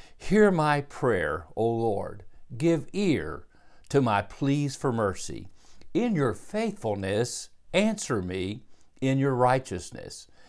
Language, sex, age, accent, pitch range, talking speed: English, male, 50-69, American, 110-150 Hz, 115 wpm